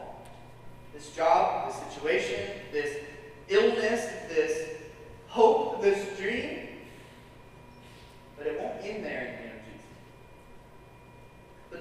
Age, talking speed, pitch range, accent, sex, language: 30-49, 105 wpm, 185-305 Hz, American, male, English